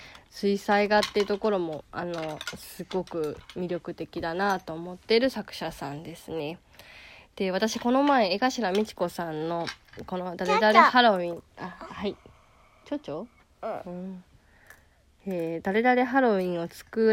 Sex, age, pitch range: female, 20-39, 180-220 Hz